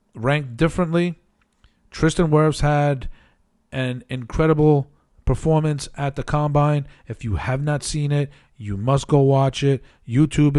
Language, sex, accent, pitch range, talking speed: English, male, American, 125-150 Hz, 130 wpm